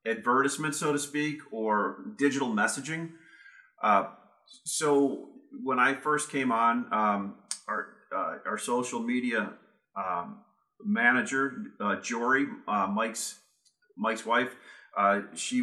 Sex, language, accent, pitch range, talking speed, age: male, English, American, 110-165 Hz, 115 wpm, 40-59